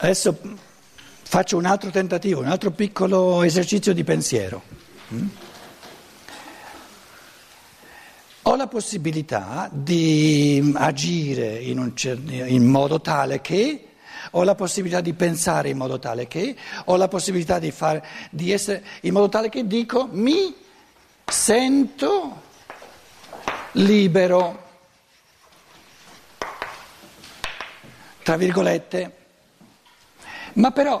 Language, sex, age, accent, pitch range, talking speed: Italian, male, 60-79, native, 170-240 Hz, 95 wpm